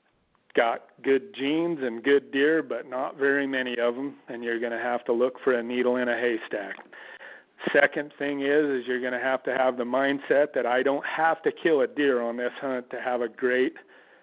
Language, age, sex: English, 40-59, male